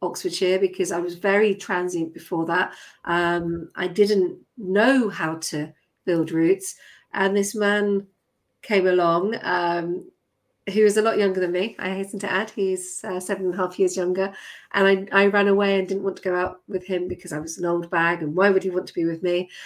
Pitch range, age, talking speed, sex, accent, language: 180-200 Hz, 40-59, 210 wpm, female, British, English